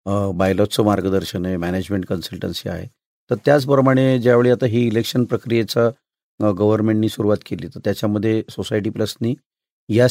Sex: male